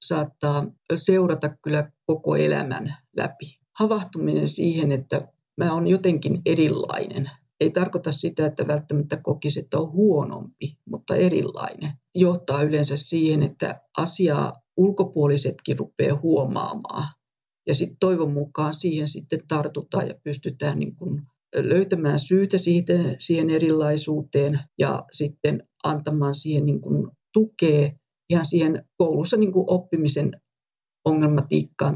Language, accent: Finnish, native